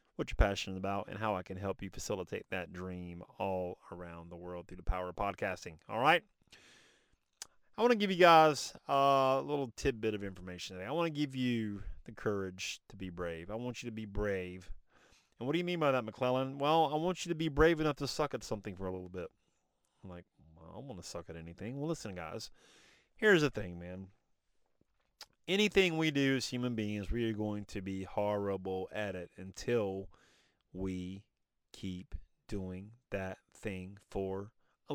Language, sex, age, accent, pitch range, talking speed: English, male, 30-49, American, 95-145 Hz, 195 wpm